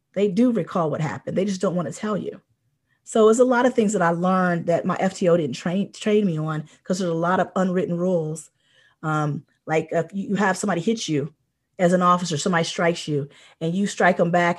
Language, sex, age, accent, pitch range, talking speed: English, female, 30-49, American, 170-230 Hz, 225 wpm